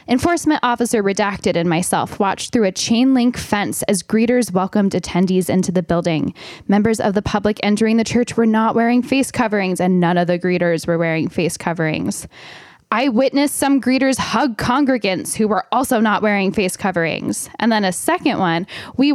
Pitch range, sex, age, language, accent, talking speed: 195-260 Hz, female, 10-29, English, American, 180 wpm